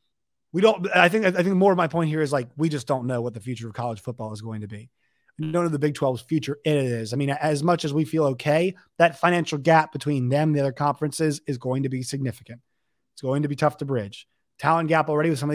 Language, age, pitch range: English, 30-49, 135-170 Hz